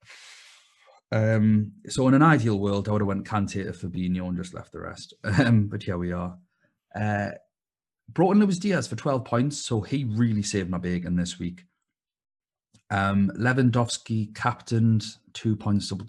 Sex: male